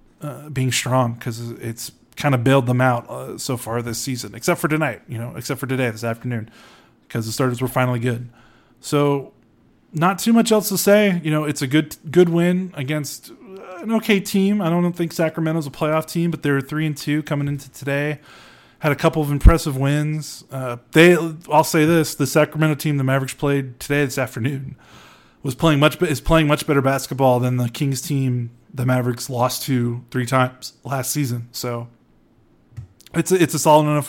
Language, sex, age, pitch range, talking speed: English, male, 20-39, 125-155 Hz, 195 wpm